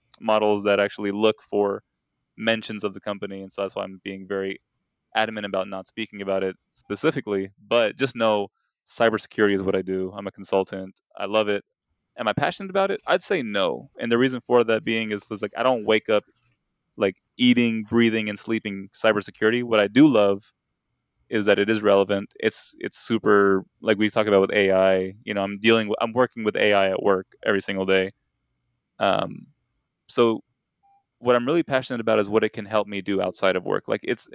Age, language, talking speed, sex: 20-39, English, 200 wpm, male